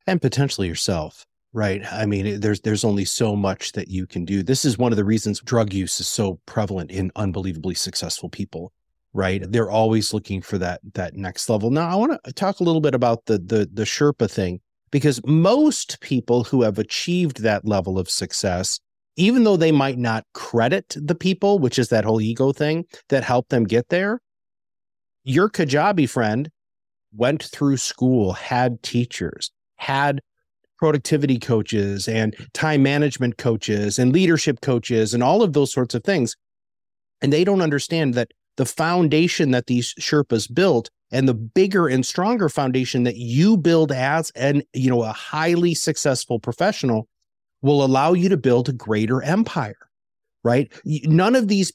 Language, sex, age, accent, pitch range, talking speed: English, male, 30-49, American, 110-155 Hz, 165 wpm